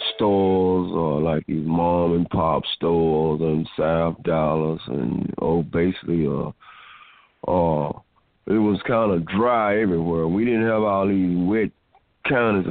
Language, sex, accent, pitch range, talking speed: English, male, American, 80-100 Hz, 135 wpm